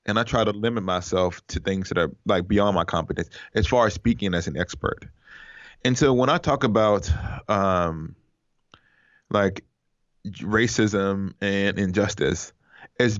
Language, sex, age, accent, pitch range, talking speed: English, male, 20-39, American, 100-120 Hz, 150 wpm